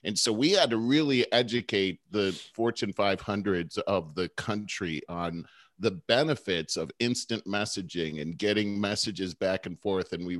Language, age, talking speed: English, 40-59, 155 wpm